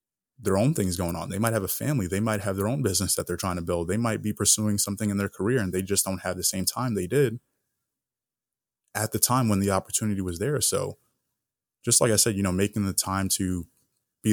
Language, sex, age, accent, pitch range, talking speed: English, male, 20-39, American, 95-110 Hz, 245 wpm